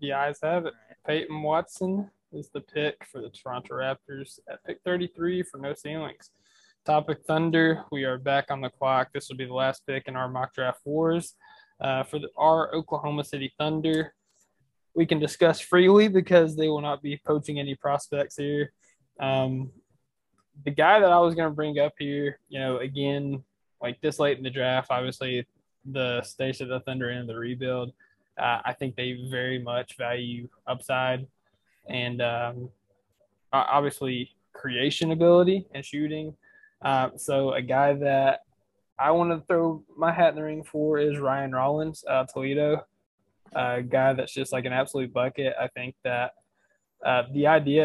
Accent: American